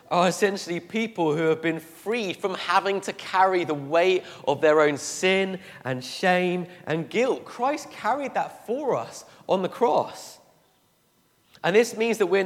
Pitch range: 160-205 Hz